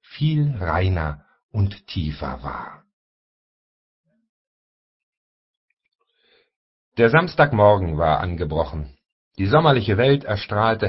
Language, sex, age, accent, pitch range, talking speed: German, male, 60-79, German, 90-125 Hz, 70 wpm